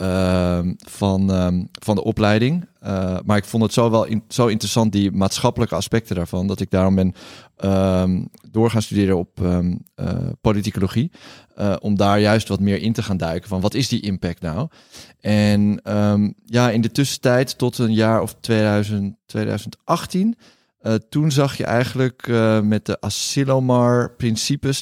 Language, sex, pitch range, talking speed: Dutch, male, 100-120 Hz, 170 wpm